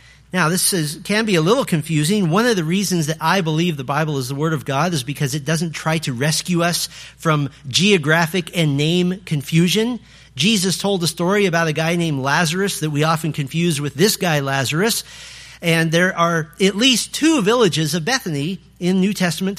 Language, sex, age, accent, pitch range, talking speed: English, male, 40-59, American, 160-210 Hz, 195 wpm